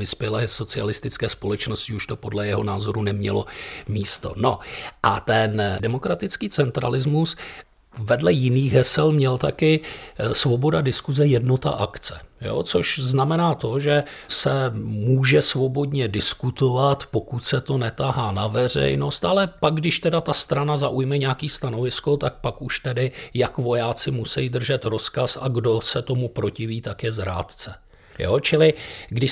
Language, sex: Czech, male